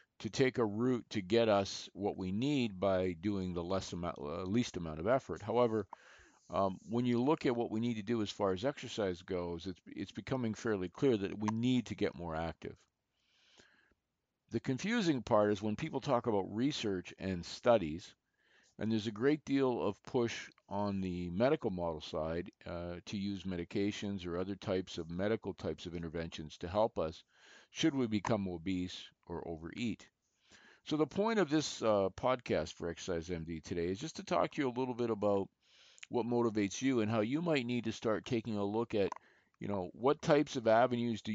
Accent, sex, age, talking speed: American, male, 50-69, 190 wpm